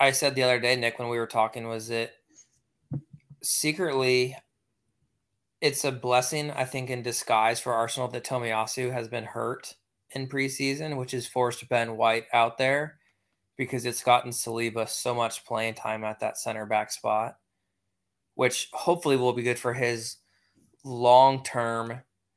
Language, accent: English, American